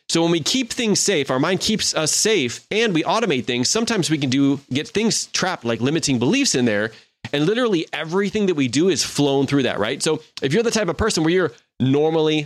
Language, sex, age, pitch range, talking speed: English, male, 30-49, 120-170 Hz, 230 wpm